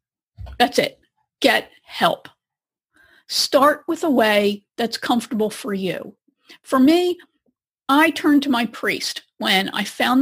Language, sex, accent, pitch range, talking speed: English, female, American, 220-300 Hz, 130 wpm